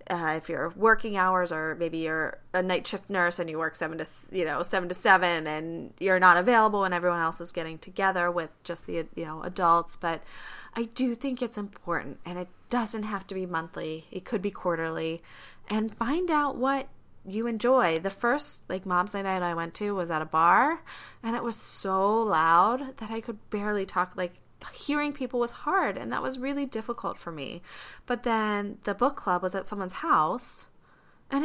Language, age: English, 20-39